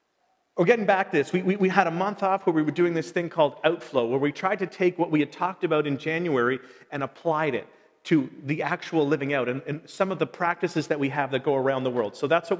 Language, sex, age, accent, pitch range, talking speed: English, male, 40-59, American, 160-205 Hz, 270 wpm